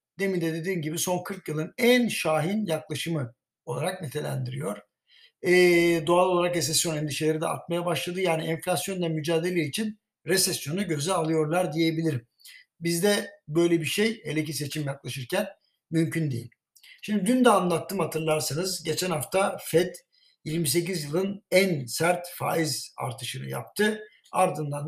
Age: 60-79